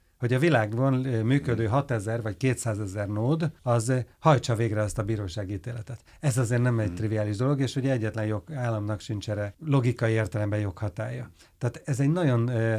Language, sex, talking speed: Hungarian, male, 155 wpm